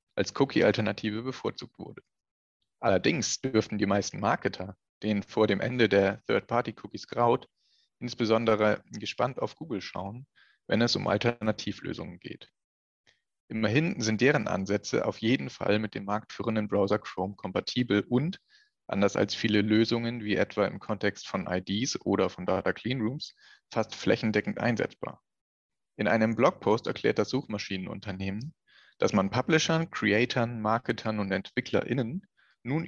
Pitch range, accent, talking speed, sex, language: 105-120 Hz, German, 130 wpm, male, German